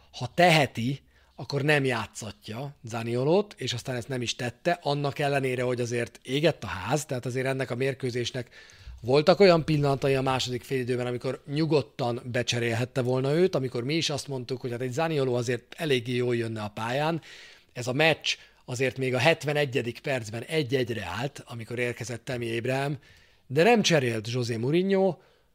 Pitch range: 120-145 Hz